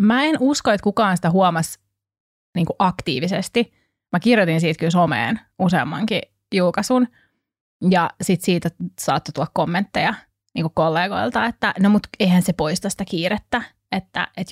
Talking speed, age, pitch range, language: 140 wpm, 20-39, 170-210 Hz, Finnish